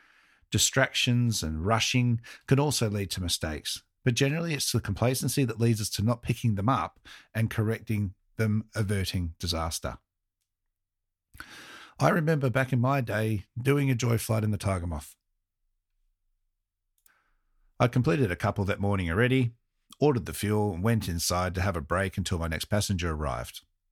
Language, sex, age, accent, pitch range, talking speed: English, male, 50-69, Australian, 90-120 Hz, 155 wpm